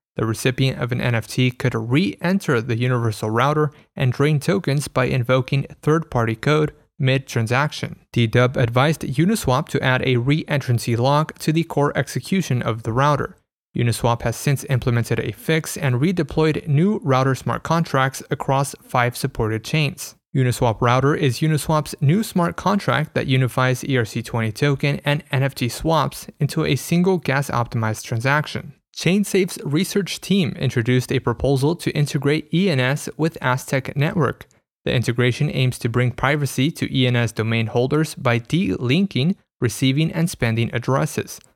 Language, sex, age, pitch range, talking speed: English, male, 30-49, 125-155 Hz, 140 wpm